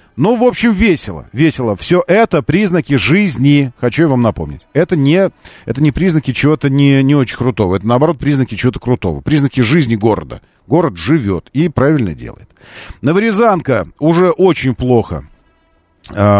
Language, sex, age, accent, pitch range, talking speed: Russian, male, 40-59, native, 110-150 Hz, 145 wpm